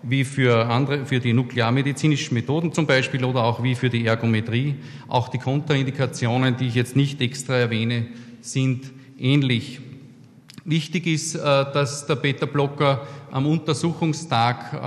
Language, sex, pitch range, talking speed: German, male, 120-145 Hz, 135 wpm